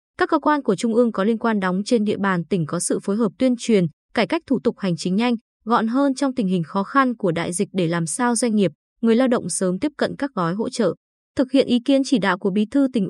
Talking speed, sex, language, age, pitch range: 285 wpm, female, Vietnamese, 20-39, 185-255 Hz